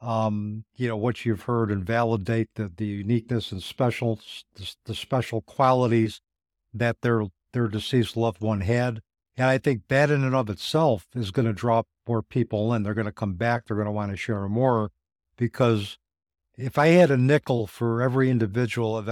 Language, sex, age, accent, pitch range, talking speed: English, male, 60-79, American, 105-130 Hz, 190 wpm